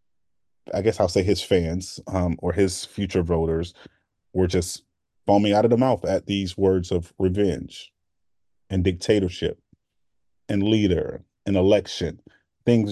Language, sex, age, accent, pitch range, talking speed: English, male, 30-49, American, 90-105 Hz, 140 wpm